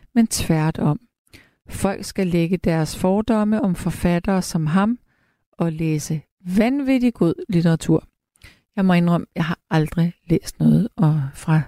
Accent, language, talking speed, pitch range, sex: native, Danish, 140 wpm, 160-215 Hz, female